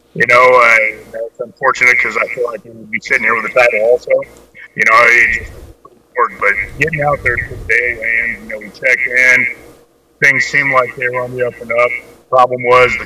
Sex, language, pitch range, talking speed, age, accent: male, English, 115-130 Hz, 220 wpm, 30-49, American